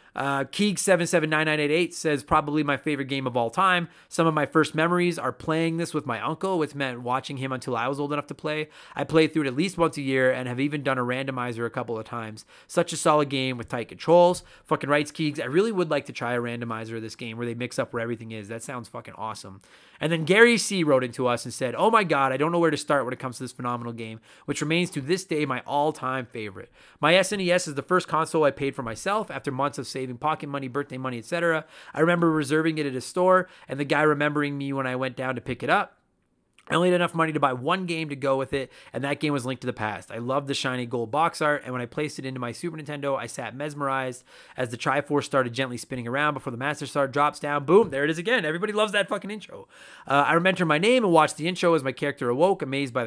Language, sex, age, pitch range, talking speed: English, male, 30-49, 130-160 Hz, 265 wpm